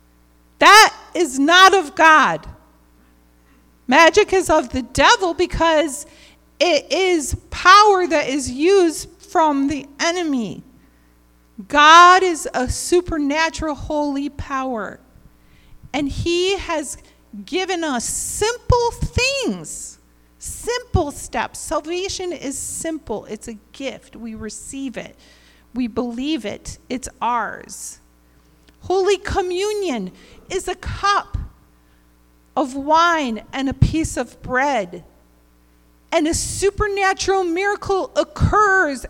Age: 40-59